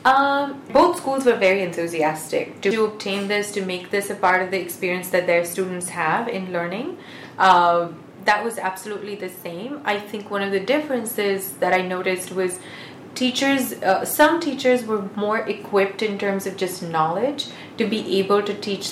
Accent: Indian